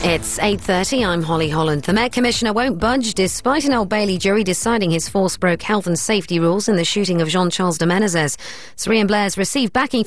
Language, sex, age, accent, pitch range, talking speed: English, female, 40-59, British, 170-220 Hz, 210 wpm